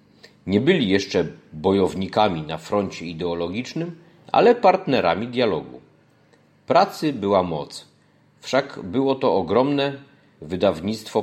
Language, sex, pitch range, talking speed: Polish, male, 95-125 Hz, 95 wpm